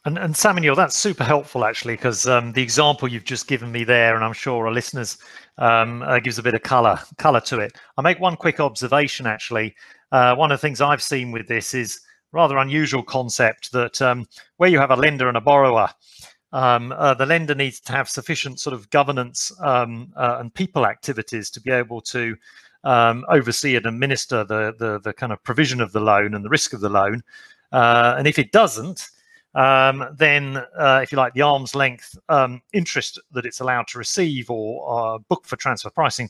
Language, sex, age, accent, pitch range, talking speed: English, male, 40-59, British, 115-140 Hz, 210 wpm